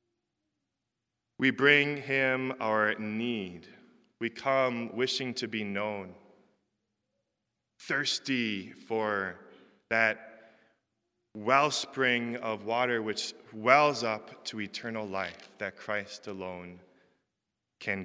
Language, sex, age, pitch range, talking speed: English, male, 20-39, 100-125 Hz, 90 wpm